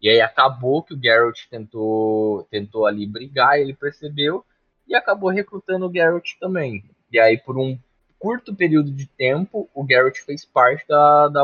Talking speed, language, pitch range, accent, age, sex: 170 wpm, Portuguese, 100-140 Hz, Brazilian, 20-39, male